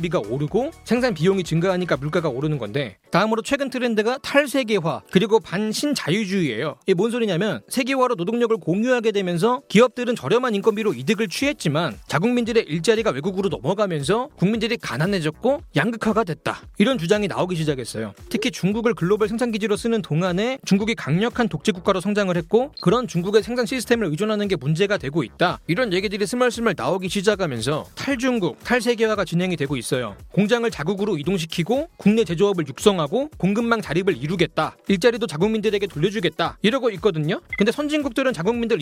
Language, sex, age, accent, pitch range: Korean, male, 30-49, native, 180-240 Hz